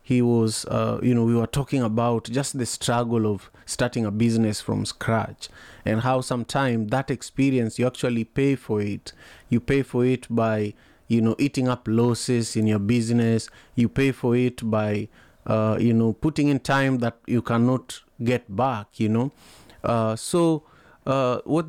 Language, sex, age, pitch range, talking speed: English, male, 30-49, 110-130 Hz, 175 wpm